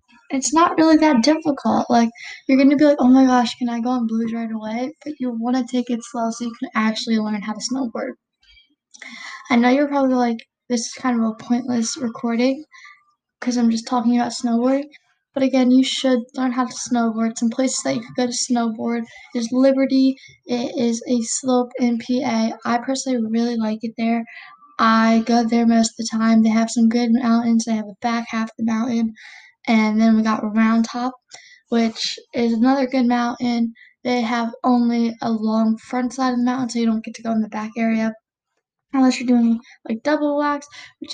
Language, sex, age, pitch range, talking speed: English, female, 10-29, 230-265 Hz, 205 wpm